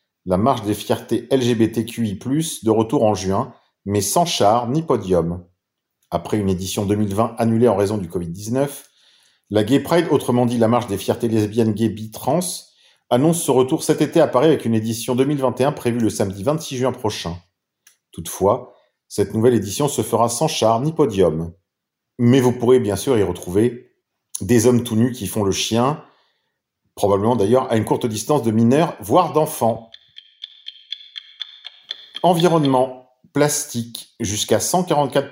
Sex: male